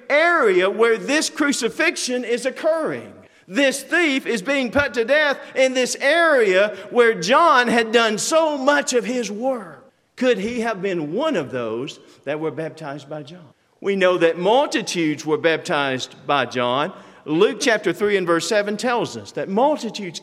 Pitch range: 210-290 Hz